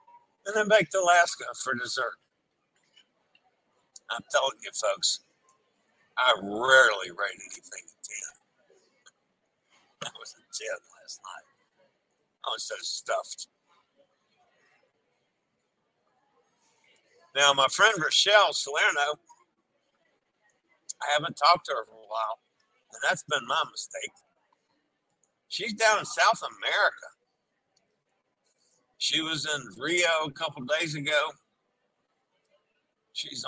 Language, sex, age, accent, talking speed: English, male, 60-79, American, 105 wpm